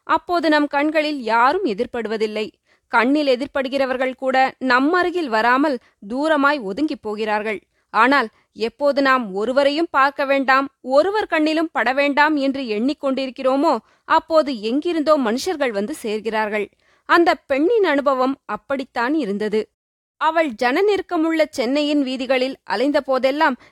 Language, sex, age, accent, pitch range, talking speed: Tamil, female, 20-39, native, 250-315 Hz, 110 wpm